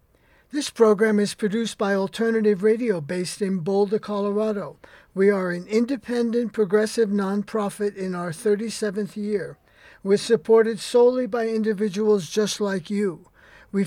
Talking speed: 130 wpm